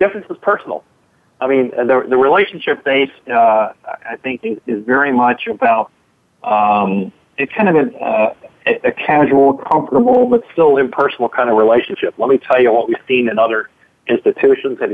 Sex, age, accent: male, 40-59, American